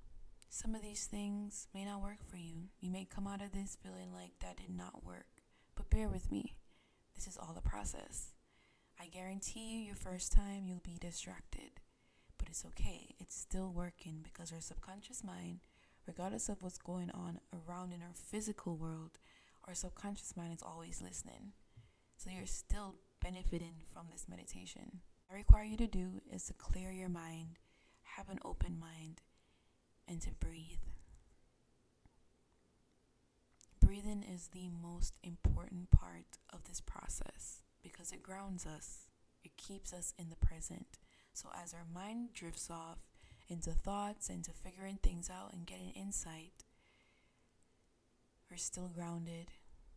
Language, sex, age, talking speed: English, female, 20-39, 155 wpm